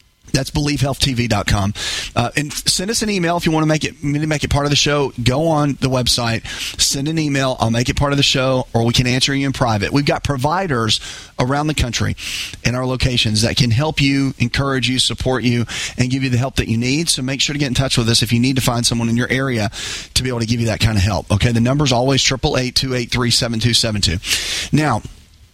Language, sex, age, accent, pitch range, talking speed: English, male, 40-59, American, 115-145 Hz, 235 wpm